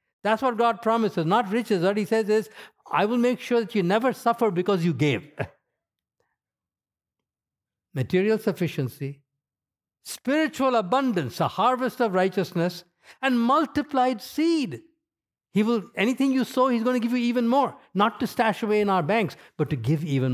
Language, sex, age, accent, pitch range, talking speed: English, male, 60-79, Indian, 120-185 Hz, 160 wpm